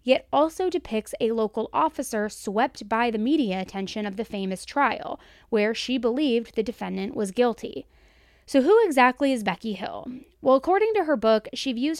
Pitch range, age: 215-285 Hz, 20-39